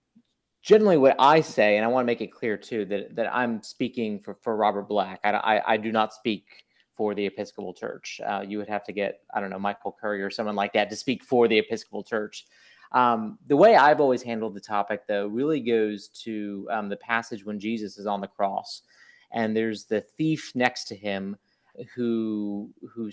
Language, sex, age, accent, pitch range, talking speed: English, male, 30-49, American, 105-125 Hz, 210 wpm